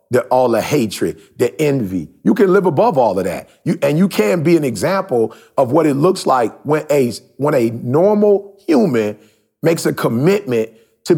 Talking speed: 175 wpm